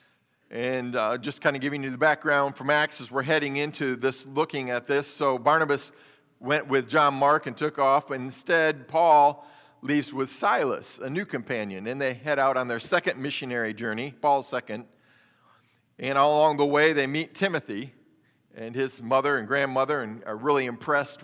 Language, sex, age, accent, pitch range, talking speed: English, male, 40-59, American, 135-170 Hz, 180 wpm